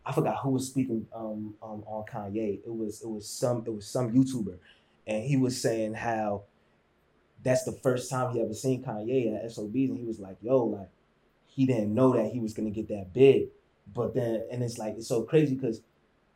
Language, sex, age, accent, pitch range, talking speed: English, male, 20-39, American, 115-140 Hz, 215 wpm